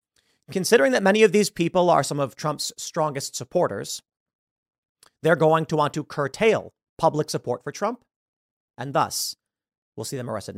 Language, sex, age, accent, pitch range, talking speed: English, male, 40-59, American, 120-170 Hz, 160 wpm